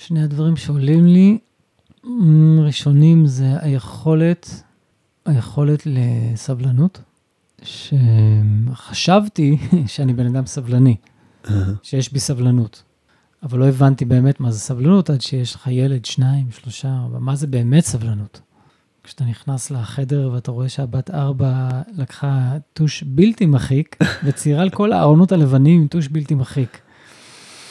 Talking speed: 95 wpm